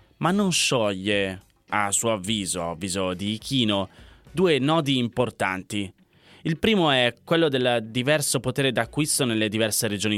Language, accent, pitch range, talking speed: Italian, native, 105-135 Hz, 140 wpm